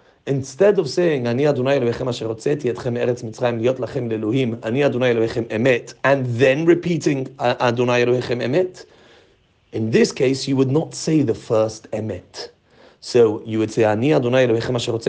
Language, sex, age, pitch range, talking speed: English, male, 40-59, 115-145 Hz, 115 wpm